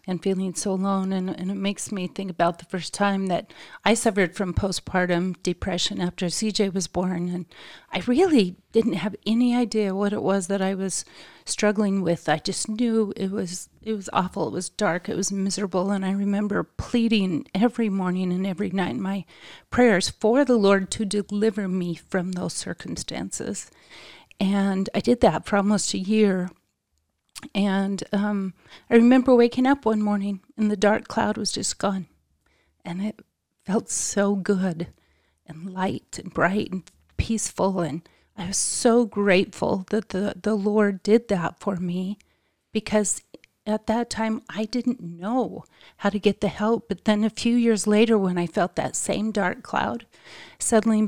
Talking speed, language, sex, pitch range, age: 170 wpm, English, female, 185-215 Hz, 40-59